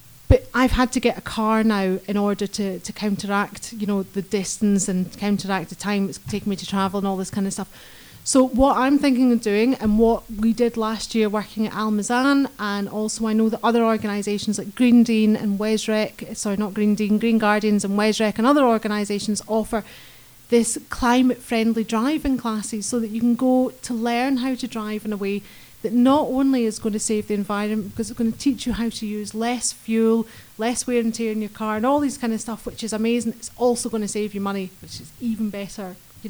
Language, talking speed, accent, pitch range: English, 225 wpm, British, 210-245 Hz